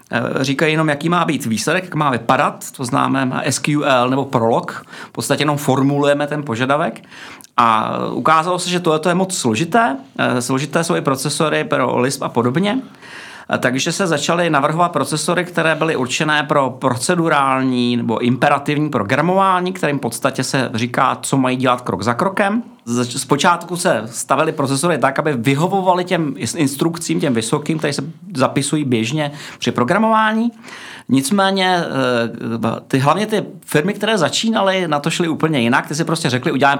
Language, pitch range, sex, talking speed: Czech, 125-165 Hz, male, 155 wpm